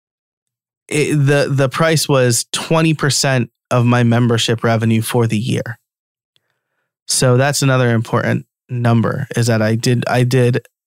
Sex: male